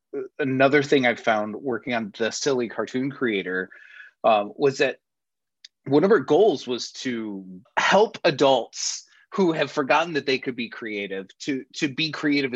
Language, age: English, 30-49